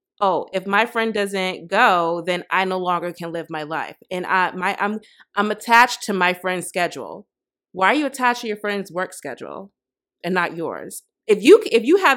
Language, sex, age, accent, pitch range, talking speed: English, female, 20-39, American, 190-245 Hz, 200 wpm